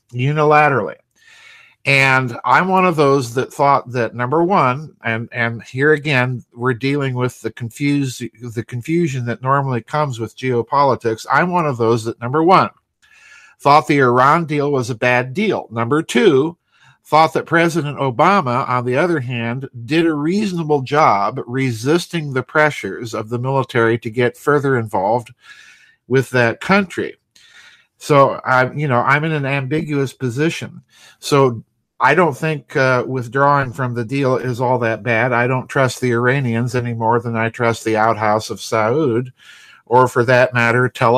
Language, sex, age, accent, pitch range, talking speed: English, male, 50-69, American, 120-155 Hz, 160 wpm